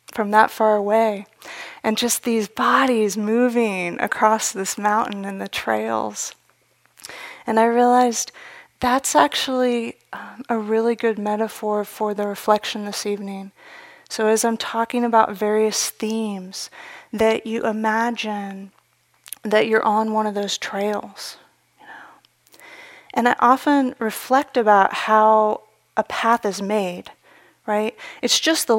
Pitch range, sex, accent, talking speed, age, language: 215-245 Hz, female, American, 125 wpm, 30-49, English